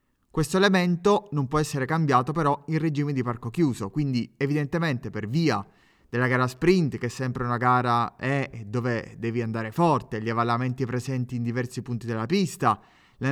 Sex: male